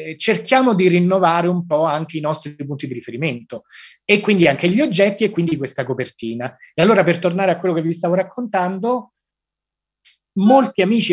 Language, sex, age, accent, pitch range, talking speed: Italian, male, 30-49, native, 160-225 Hz, 175 wpm